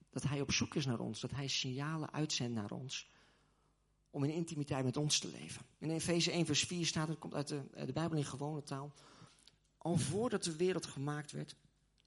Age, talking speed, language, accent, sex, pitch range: 40-59, 210 wpm, Dutch, Dutch, male, 135-165 Hz